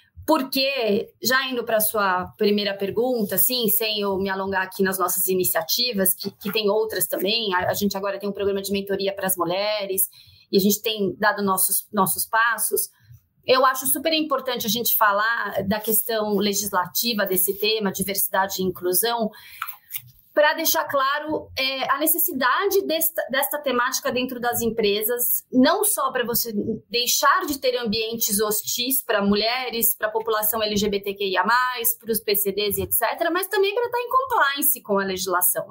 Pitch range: 200-265 Hz